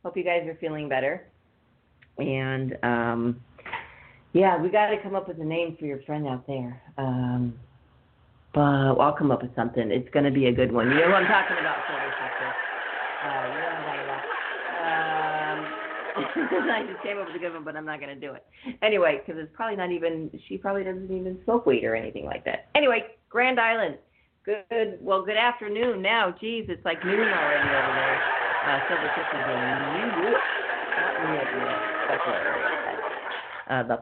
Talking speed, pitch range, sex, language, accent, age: 180 wpm, 140-200 Hz, female, English, American, 40-59